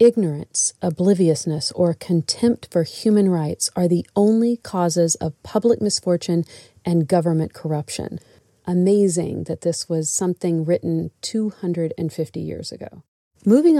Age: 40-59